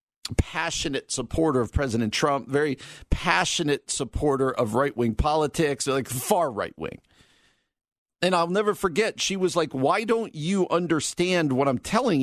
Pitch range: 125-180 Hz